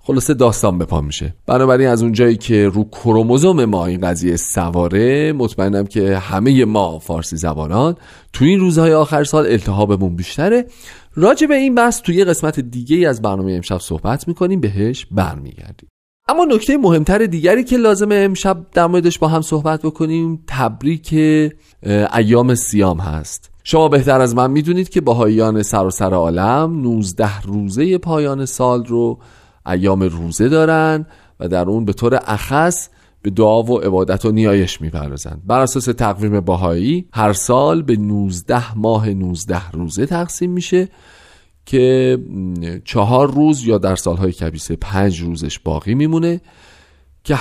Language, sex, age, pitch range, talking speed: Persian, male, 40-59, 95-155 Hz, 150 wpm